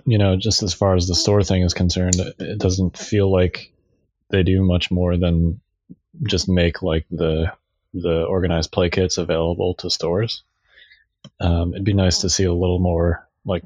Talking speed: 180 wpm